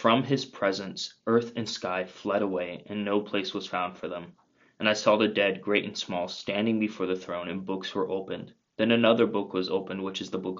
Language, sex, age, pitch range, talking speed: English, male, 20-39, 95-105 Hz, 225 wpm